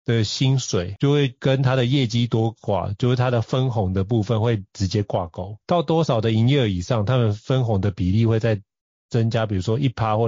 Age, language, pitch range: 30-49, Chinese, 110-140 Hz